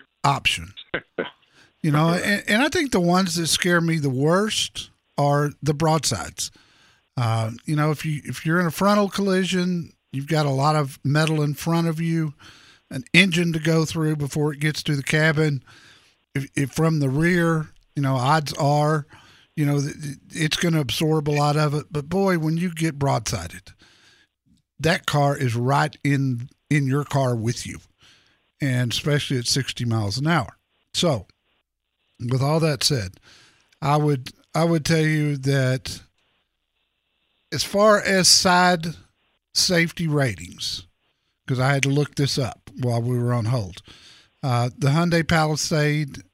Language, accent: English, American